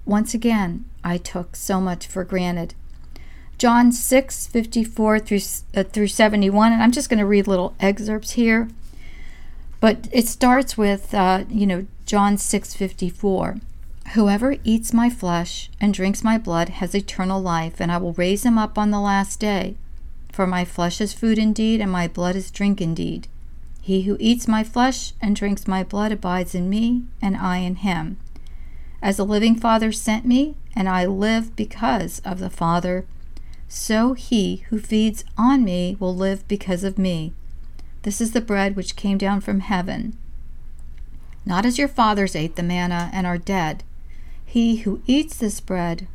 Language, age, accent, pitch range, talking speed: English, 50-69, American, 175-225 Hz, 175 wpm